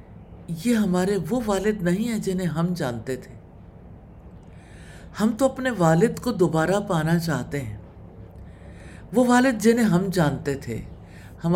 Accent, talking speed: Indian, 135 wpm